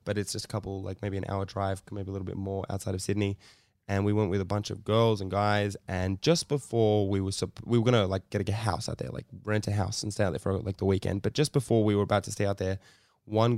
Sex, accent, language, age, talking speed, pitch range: male, Australian, English, 10-29, 290 wpm, 100-115 Hz